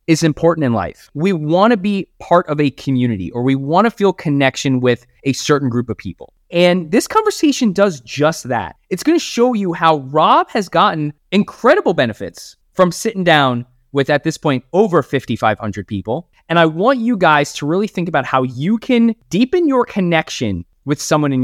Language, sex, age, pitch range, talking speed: English, male, 20-39, 135-220 Hz, 195 wpm